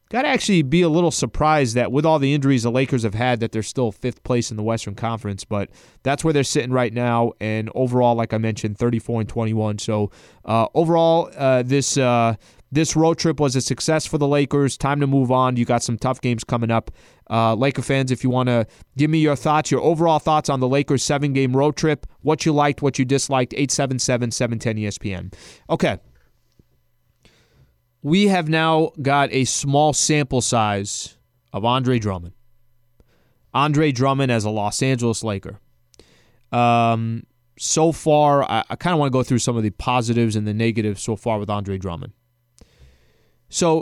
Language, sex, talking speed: English, male, 185 wpm